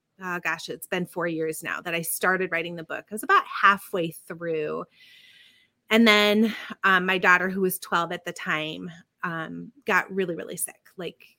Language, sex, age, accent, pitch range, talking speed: English, female, 30-49, American, 160-200 Hz, 185 wpm